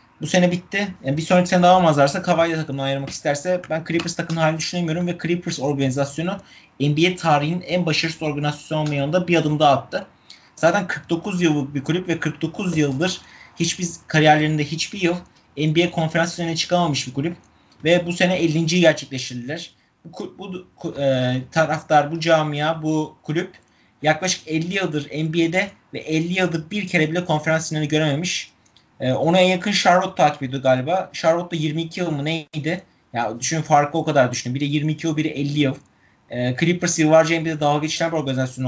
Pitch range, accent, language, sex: 140-170 Hz, native, Turkish, male